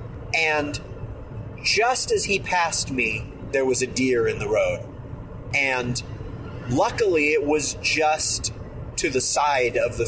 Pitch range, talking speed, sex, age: 110-140 Hz, 135 wpm, male, 30-49